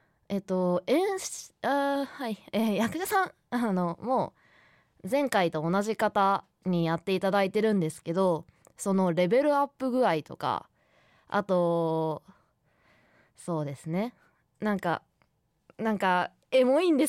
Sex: female